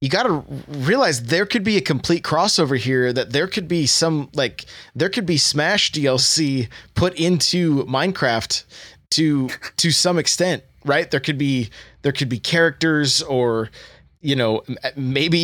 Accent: American